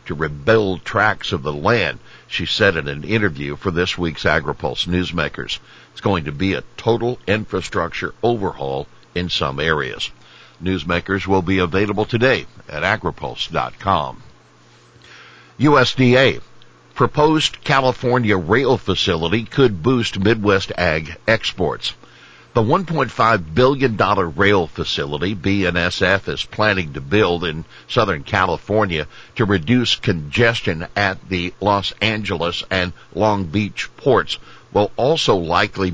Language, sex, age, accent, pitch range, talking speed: English, male, 60-79, American, 85-110 Hz, 120 wpm